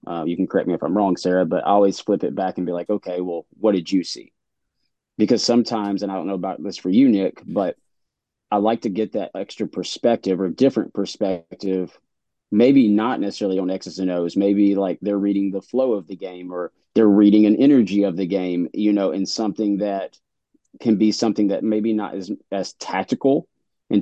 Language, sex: English, male